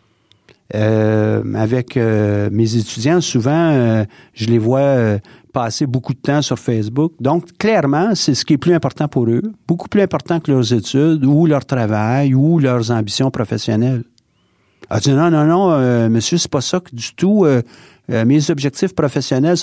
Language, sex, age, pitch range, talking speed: French, male, 50-69, 115-150 Hz, 175 wpm